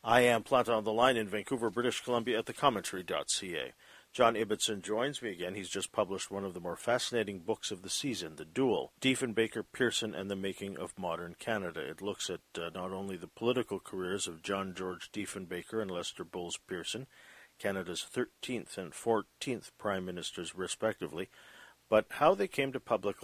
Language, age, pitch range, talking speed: English, 50-69, 95-115 Hz, 175 wpm